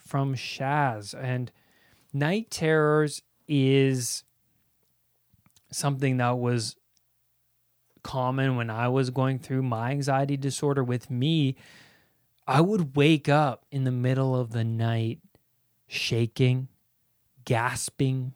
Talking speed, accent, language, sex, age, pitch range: 105 wpm, American, English, male, 20-39, 125-160 Hz